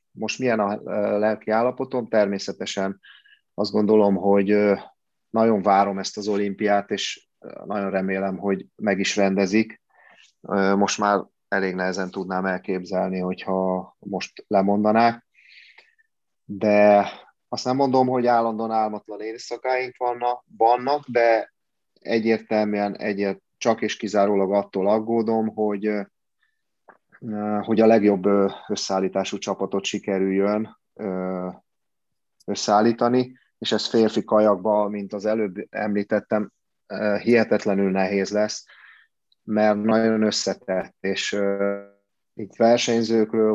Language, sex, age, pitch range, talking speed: Hungarian, male, 30-49, 100-110 Hz, 100 wpm